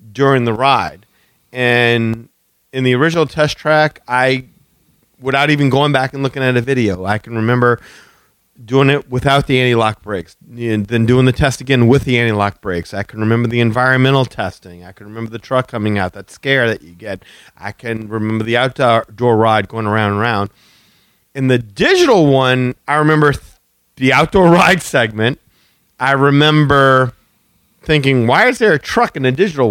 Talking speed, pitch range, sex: 175 wpm, 120-160 Hz, male